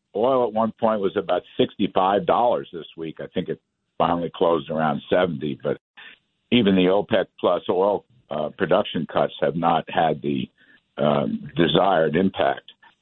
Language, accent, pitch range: English, American, 90-135 Hz